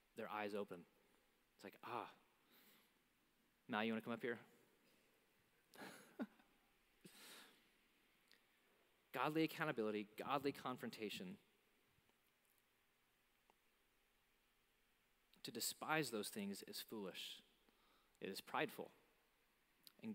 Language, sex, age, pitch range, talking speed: English, male, 30-49, 125-160 Hz, 80 wpm